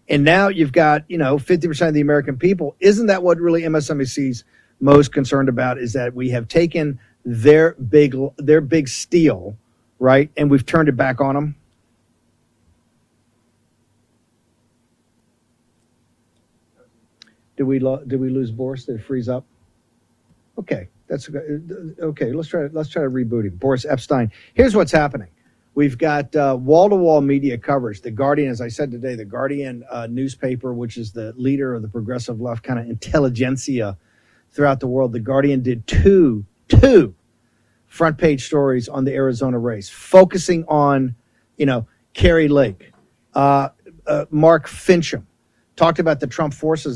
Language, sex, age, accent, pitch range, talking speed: English, male, 50-69, American, 120-150 Hz, 155 wpm